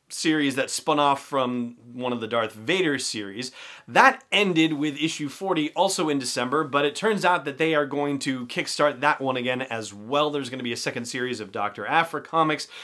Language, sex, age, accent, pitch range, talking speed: English, male, 30-49, American, 125-170 Hz, 210 wpm